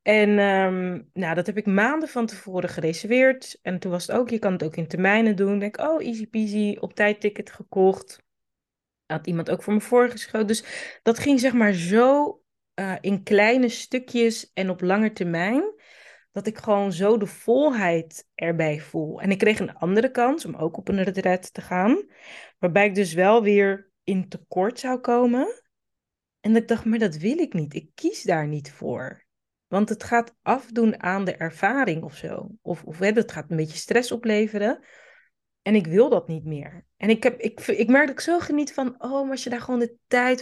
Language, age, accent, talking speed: Dutch, 20-39, Dutch, 195 wpm